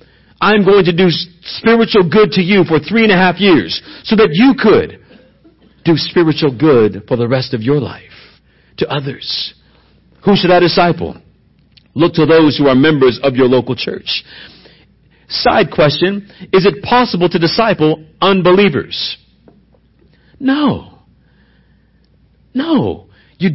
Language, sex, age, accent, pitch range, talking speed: English, male, 50-69, American, 155-200 Hz, 140 wpm